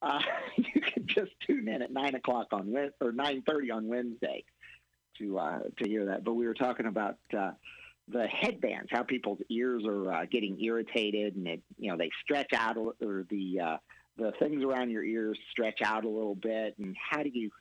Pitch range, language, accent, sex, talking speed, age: 100-130 Hz, English, American, male, 200 wpm, 50-69